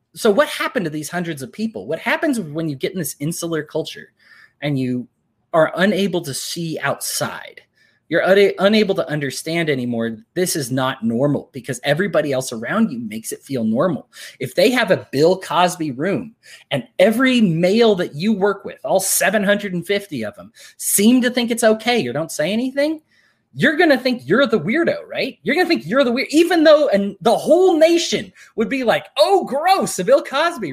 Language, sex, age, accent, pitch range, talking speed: English, male, 20-39, American, 150-235 Hz, 190 wpm